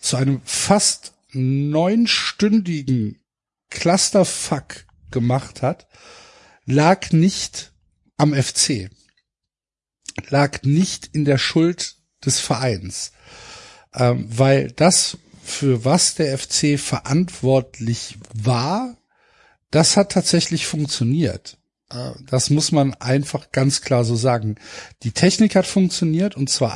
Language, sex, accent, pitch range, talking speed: German, male, German, 130-165 Hz, 105 wpm